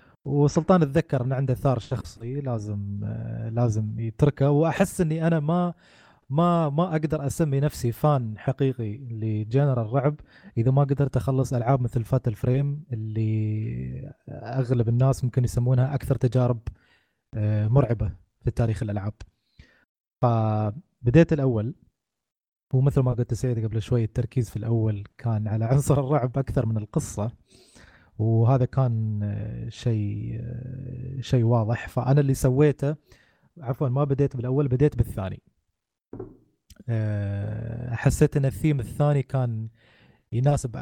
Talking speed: 115 wpm